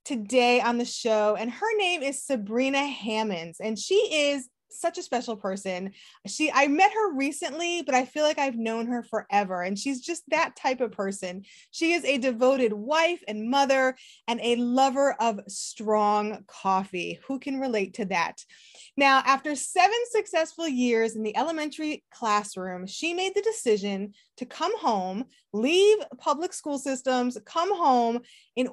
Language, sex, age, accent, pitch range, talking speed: English, female, 20-39, American, 220-320 Hz, 165 wpm